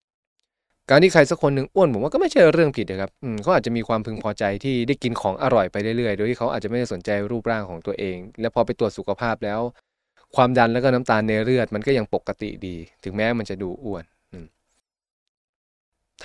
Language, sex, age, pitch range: Thai, male, 20-39, 100-125 Hz